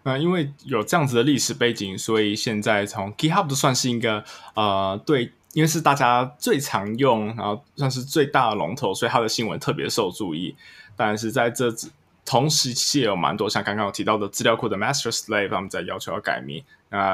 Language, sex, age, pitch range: Chinese, male, 20-39, 110-145 Hz